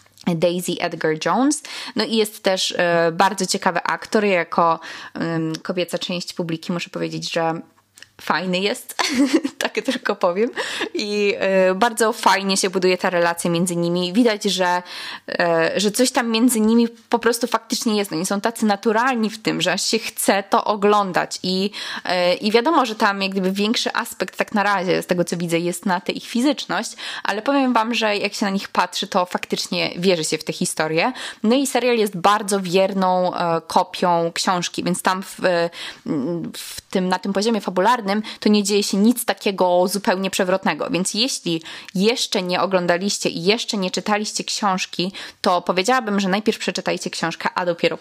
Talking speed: 165 wpm